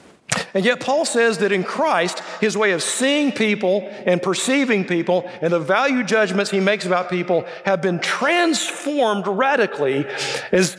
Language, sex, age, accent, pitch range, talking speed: English, male, 50-69, American, 165-230 Hz, 155 wpm